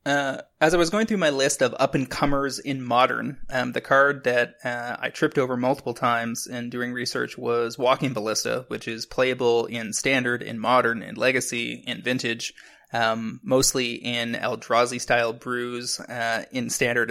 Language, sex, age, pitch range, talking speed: English, male, 20-39, 120-140 Hz, 165 wpm